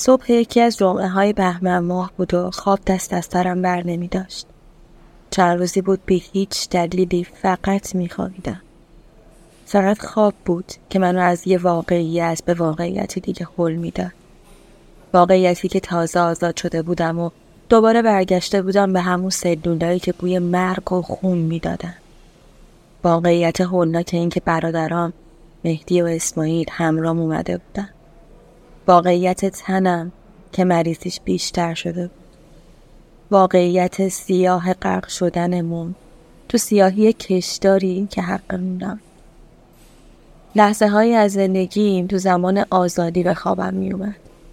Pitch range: 170-190 Hz